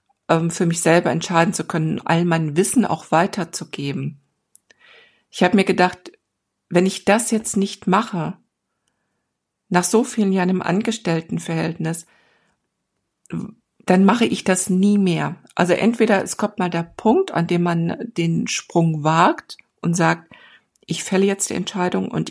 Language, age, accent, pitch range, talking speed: German, 50-69, German, 170-205 Hz, 145 wpm